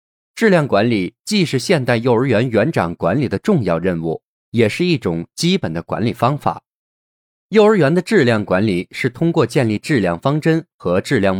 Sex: male